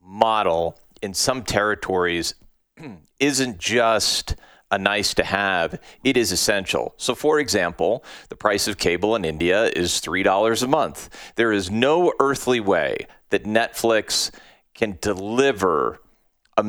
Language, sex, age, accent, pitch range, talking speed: English, male, 40-59, American, 105-130 Hz, 135 wpm